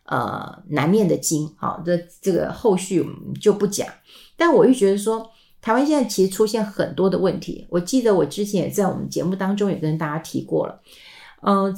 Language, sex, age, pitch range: Chinese, female, 50-69, 165-205 Hz